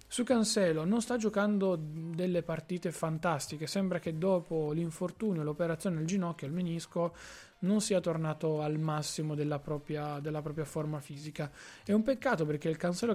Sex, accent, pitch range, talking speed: male, native, 150-175 Hz, 155 wpm